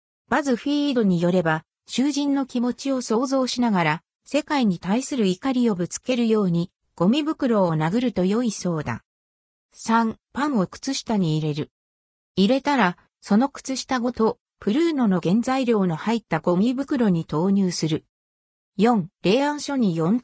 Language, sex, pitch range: Japanese, female, 175-255 Hz